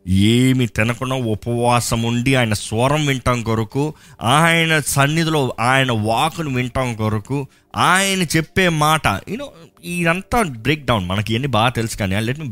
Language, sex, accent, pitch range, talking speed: Telugu, male, native, 110-155 Hz, 135 wpm